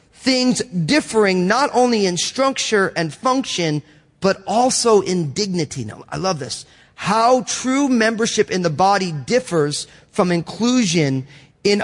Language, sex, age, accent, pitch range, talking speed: English, male, 30-49, American, 165-225 Hz, 130 wpm